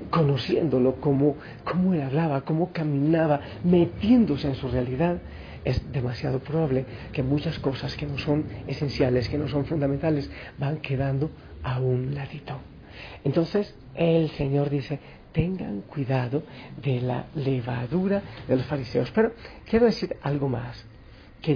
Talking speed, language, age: 135 wpm, Spanish, 50-69